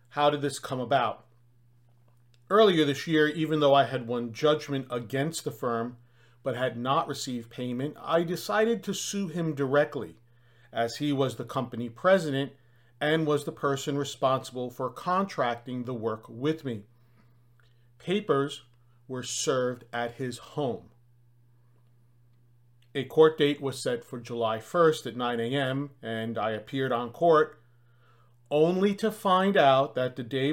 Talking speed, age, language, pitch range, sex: 145 wpm, 40-59, English, 120-145 Hz, male